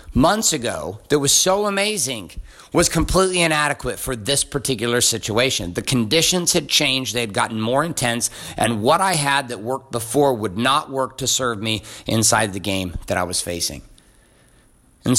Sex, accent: male, American